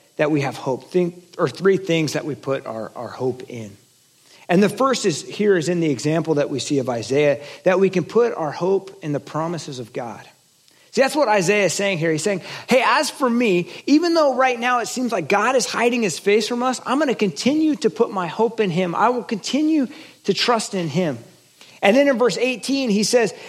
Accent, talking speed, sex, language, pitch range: American, 230 wpm, male, English, 170-235 Hz